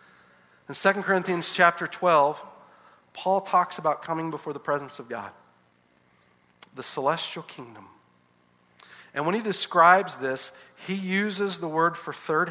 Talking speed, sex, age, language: 135 wpm, male, 40-59, English